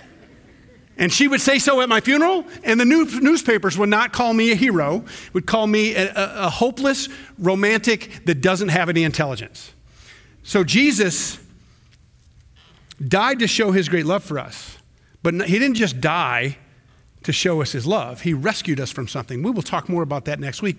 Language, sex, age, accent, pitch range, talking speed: English, male, 40-59, American, 125-180 Hz, 180 wpm